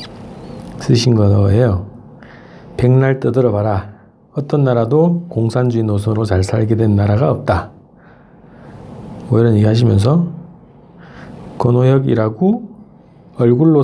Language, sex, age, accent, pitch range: Korean, male, 40-59, native, 110-155 Hz